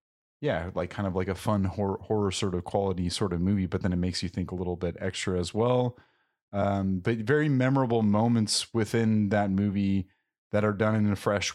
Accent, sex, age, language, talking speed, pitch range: American, male, 30-49, English, 215 wpm, 90-110 Hz